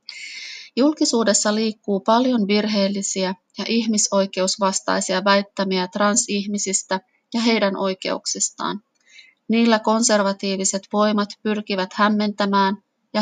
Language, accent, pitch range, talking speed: Finnish, native, 195-220 Hz, 75 wpm